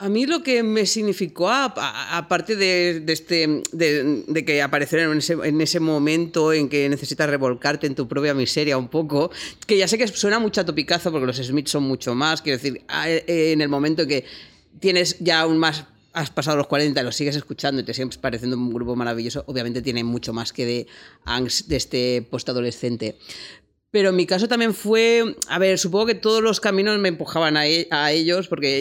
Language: Spanish